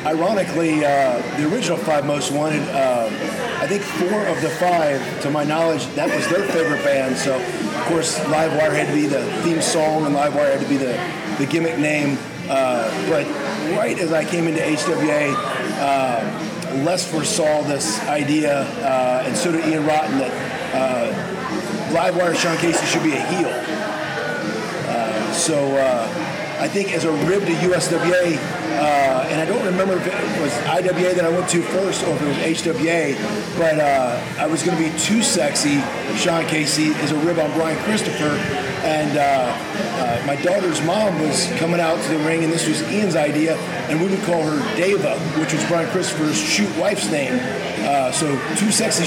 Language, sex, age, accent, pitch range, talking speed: English, male, 40-59, American, 150-175 Hz, 180 wpm